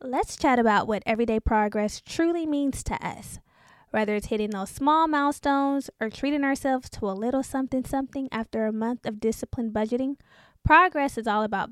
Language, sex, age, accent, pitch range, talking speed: English, female, 10-29, American, 215-270 Hz, 175 wpm